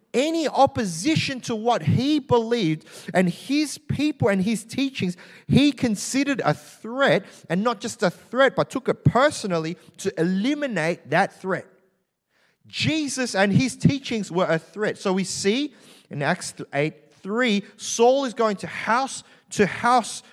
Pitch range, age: 140-205 Hz, 30-49